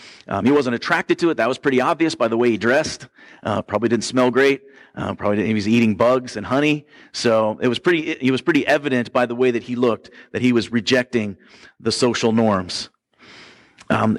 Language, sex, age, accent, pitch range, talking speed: English, male, 40-59, American, 115-150 Hz, 215 wpm